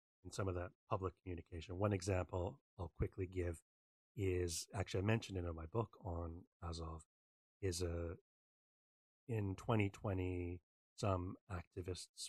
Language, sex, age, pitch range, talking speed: English, male, 30-49, 85-100 Hz, 135 wpm